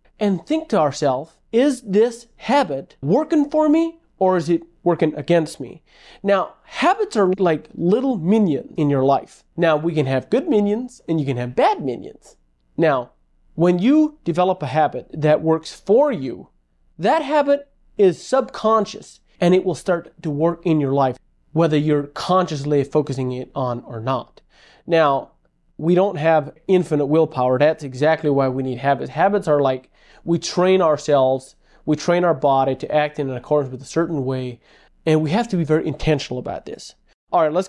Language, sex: English, male